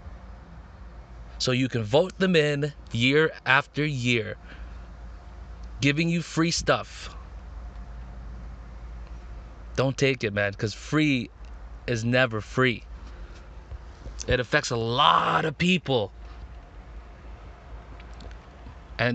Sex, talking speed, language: male, 90 wpm, English